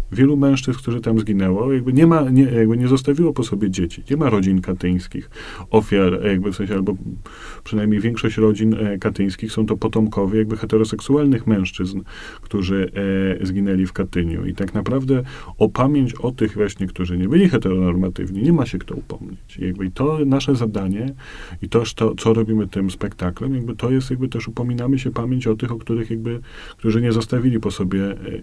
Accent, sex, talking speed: native, male, 185 wpm